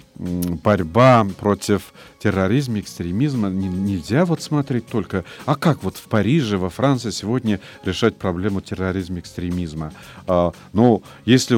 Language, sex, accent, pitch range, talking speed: Russian, male, native, 100-130 Hz, 120 wpm